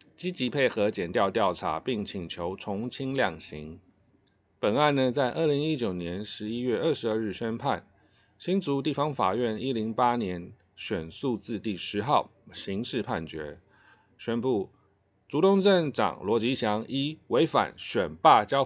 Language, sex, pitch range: Chinese, male, 100-130 Hz